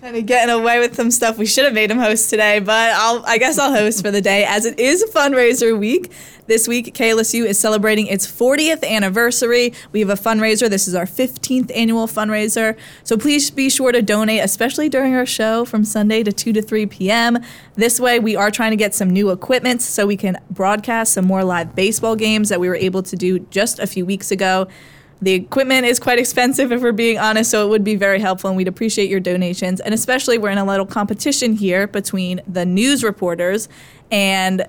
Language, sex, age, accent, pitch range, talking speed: English, female, 20-39, American, 195-235 Hz, 215 wpm